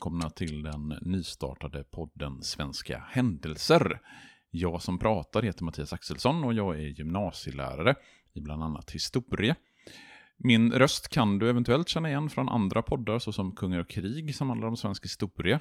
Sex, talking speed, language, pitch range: male, 155 wpm, Swedish, 80-110 Hz